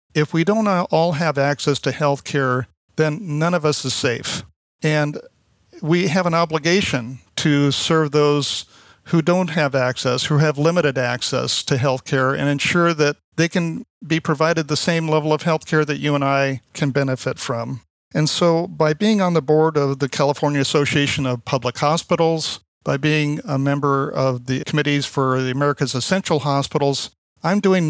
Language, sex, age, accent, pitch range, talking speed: English, male, 50-69, American, 140-165 Hz, 175 wpm